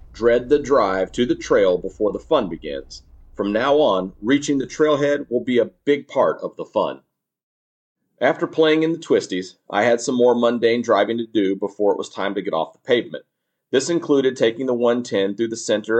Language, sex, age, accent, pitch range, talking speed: English, male, 40-59, American, 110-150 Hz, 205 wpm